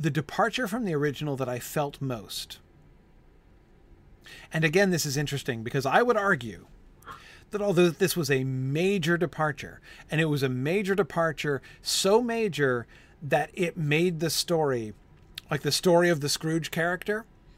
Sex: male